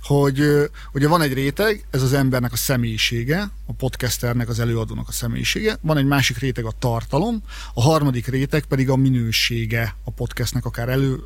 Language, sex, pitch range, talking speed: Hungarian, male, 120-150 Hz, 170 wpm